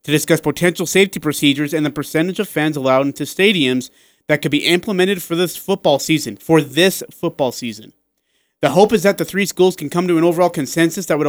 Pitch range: 130-160 Hz